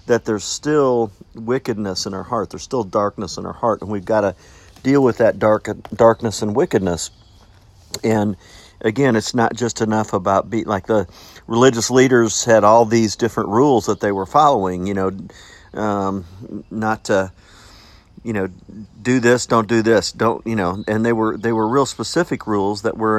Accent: American